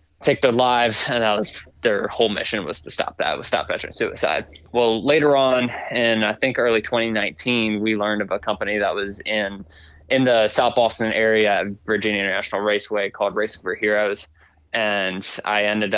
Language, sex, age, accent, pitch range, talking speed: English, male, 20-39, American, 105-120 Hz, 185 wpm